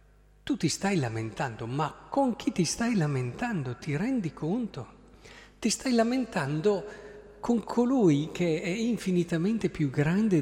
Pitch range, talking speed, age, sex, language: 140-205 Hz, 130 wpm, 50-69, male, Italian